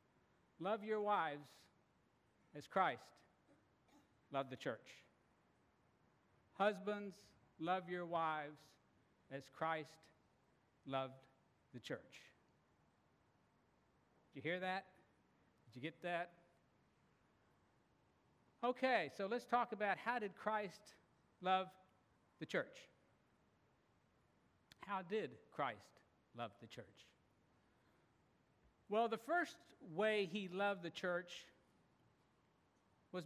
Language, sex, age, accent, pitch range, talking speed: English, male, 60-79, American, 160-220 Hz, 90 wpm